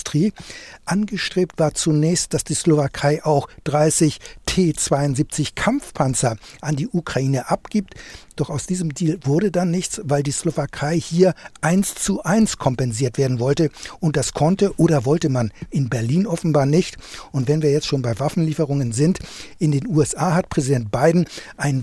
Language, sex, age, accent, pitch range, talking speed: German, male, 60-79, German, 140-175 Hz, 150 wpm